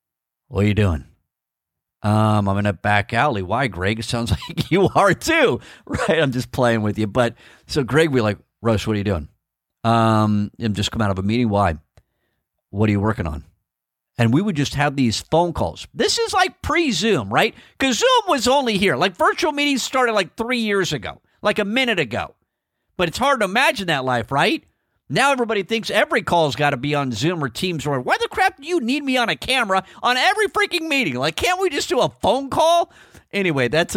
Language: English